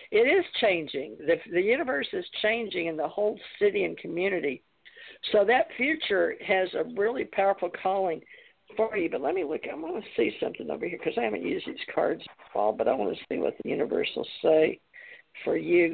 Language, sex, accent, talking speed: English, female, American, 205 wpm